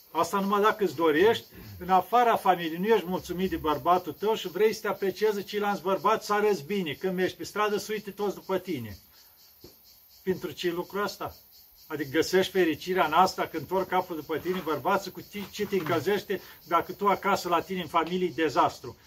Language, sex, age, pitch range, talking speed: Romanian, male, 50-69, 160-200 Hz, 190 wpm